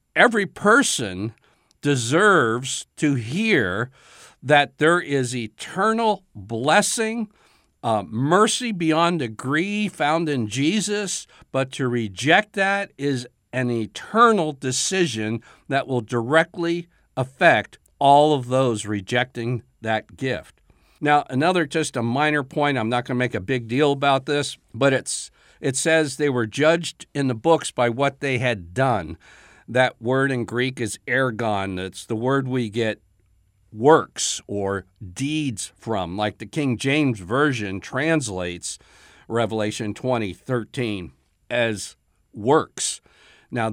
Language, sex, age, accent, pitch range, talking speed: English, male, 60-79, American, 110-150 Hz, 130 wpm